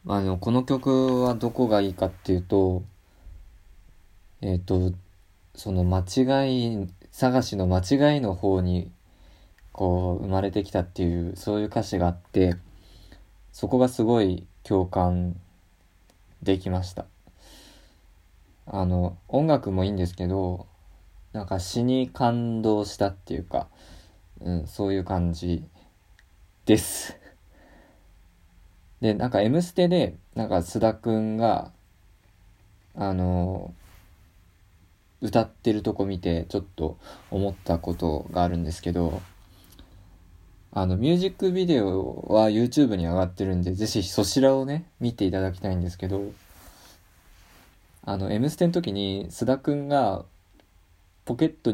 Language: Japanese